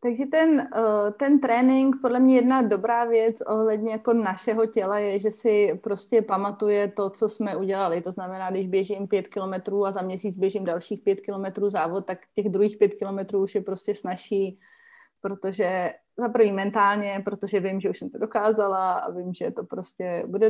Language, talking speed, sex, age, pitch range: Slovak, 180 wpm, female, 30-49, 190-220 Hz